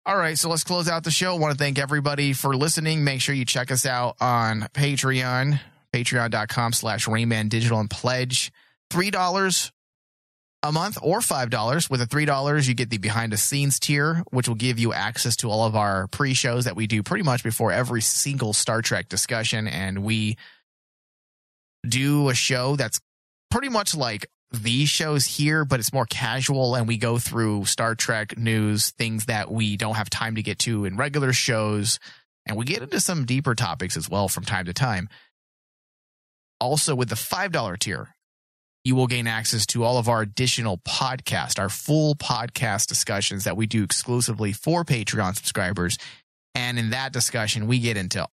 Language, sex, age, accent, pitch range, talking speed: English, male, 20-39, American, 110-135 Hz, 180 wpm